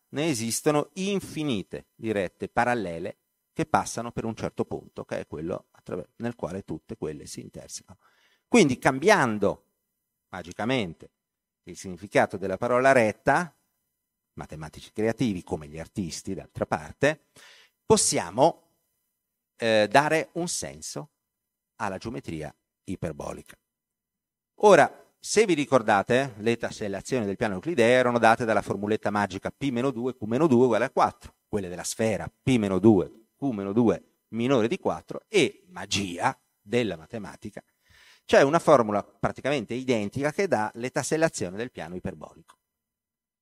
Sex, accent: male, native